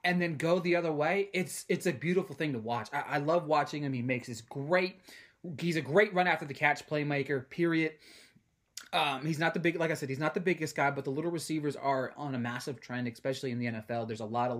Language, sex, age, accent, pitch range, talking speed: English, male, 20-39, American, 135-180 Hz, 255 wpm